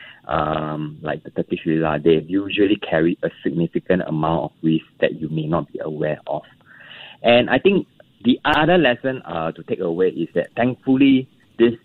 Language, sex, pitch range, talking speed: English, male, 80-100 Hz, 170 wpm